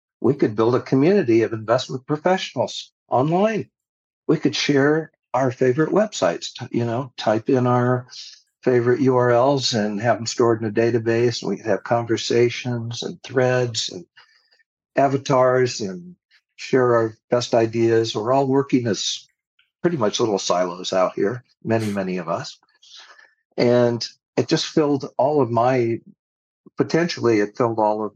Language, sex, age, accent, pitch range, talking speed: English, male, 60-79, American, 110-130 Hz, 145 wpm